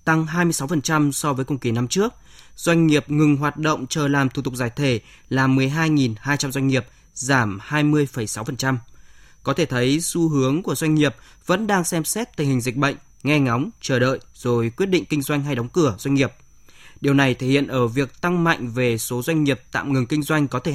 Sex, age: male, 20-39